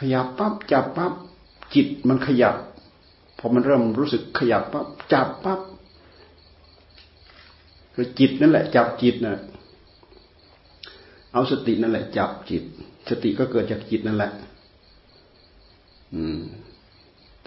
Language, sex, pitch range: Thai, male, 100-115 Hz